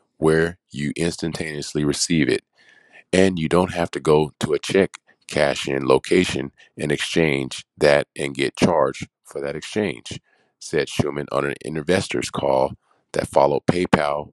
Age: 40-59